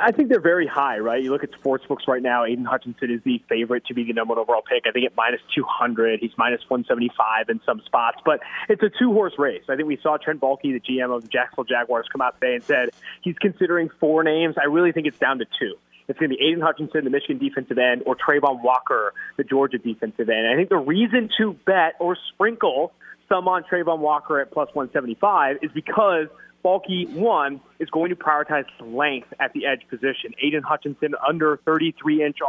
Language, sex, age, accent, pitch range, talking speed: English, male, 20-39, American, 140-190 Hz, 220 wpm